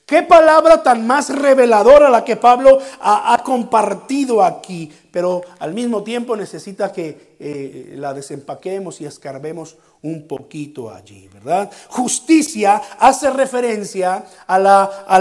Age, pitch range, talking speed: 50-69, 175-270 Hz, 125 wpm